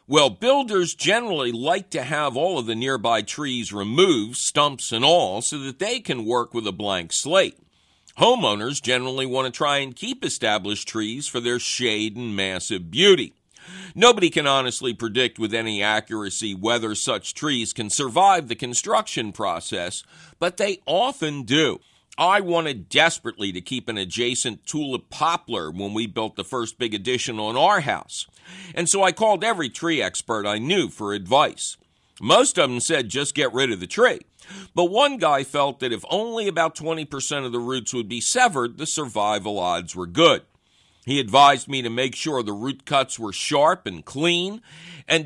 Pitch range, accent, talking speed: 115-165 Hz, American, 175 wpm